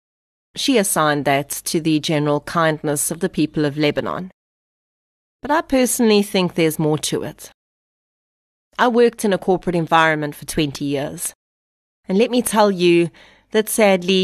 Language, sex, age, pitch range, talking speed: English, female, 30-49, 150-185 Hz, 150 wpm